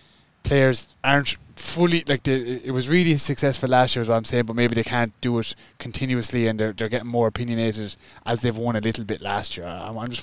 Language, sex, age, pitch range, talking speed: English, male, 20-39, 120-145 Hz, 230 wpm